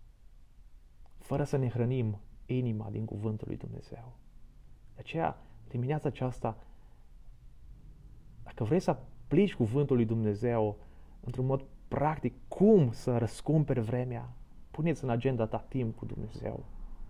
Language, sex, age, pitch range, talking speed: Romanian, male, 30-49, 110-145 Hz, 120 wpm